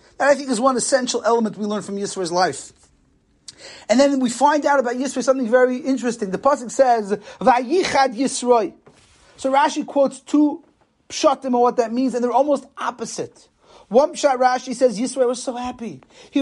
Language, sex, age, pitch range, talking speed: English, male, 30-49, 240-290 Hz, 175 wpm